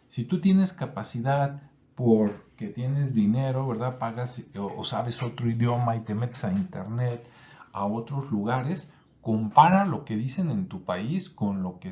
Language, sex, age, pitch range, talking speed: Spanish, male, 50-69, 110-150 Hz, 155 wpm